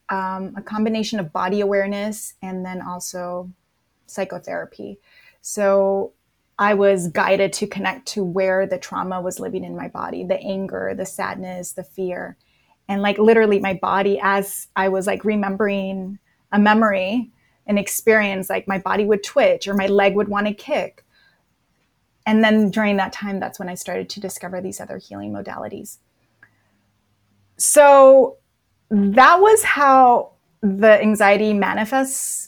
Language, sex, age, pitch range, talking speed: English, female, 20-39, 190-215 Hz, 145 wpm